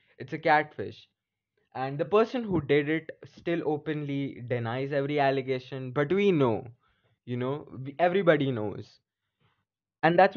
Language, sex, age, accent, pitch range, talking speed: English, male, 20-39, Indian, 115-155 Hz, 135 wpm